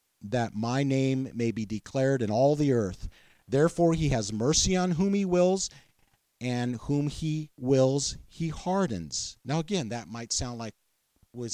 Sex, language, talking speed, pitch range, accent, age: male, English, 160 wpm, 110-135 Hz, American, 50-69